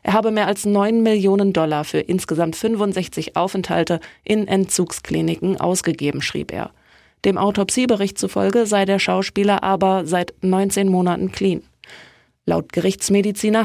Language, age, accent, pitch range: German, 20-39, German, 170-210 Hz